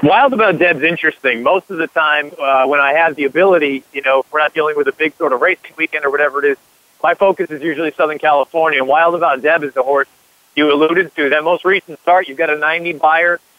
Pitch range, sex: 150-190 Hz, male